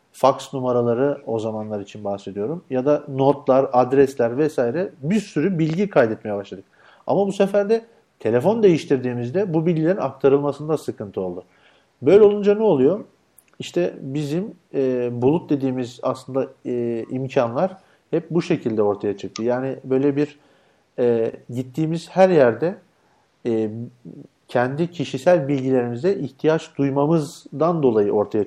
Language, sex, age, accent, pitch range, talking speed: Turkish, male, 50-69, native, 120-170 Hz, 125 wpm